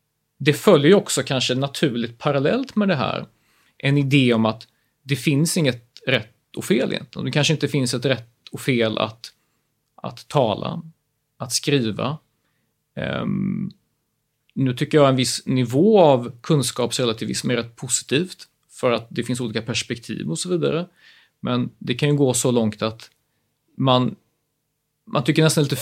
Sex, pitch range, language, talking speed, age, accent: male, 120-155 Hz, Swedish, 160 wpm, 30-49, native